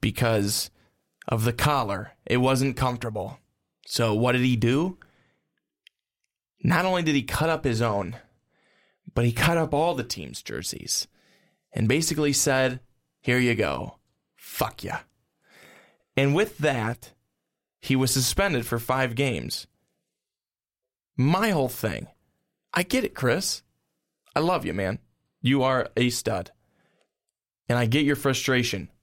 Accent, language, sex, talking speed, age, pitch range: American, English, male, 135 wpm, 20-39, 115-145 Hz